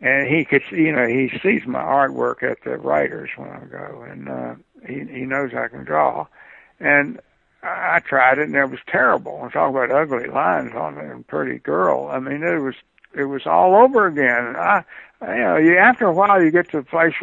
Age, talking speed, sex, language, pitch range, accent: 60-79, 225 wpm, male, English, 135-165 Hz, American